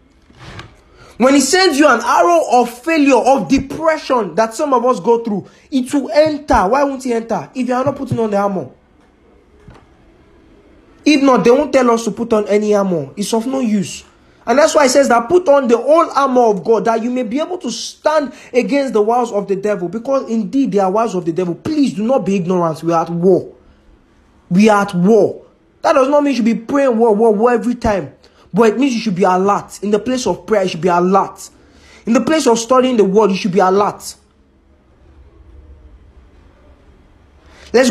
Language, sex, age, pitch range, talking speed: English, male, 20-39, 170-255 Hz, 210 wpm